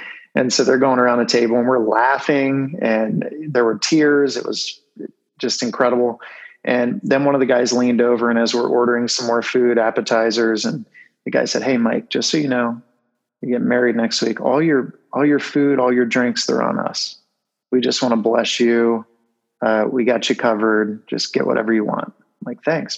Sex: male